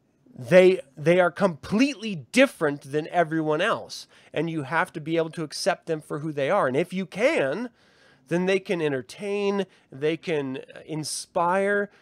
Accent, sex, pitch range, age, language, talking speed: American, male, 135-180 Hz, 30-49, English, 160 wpm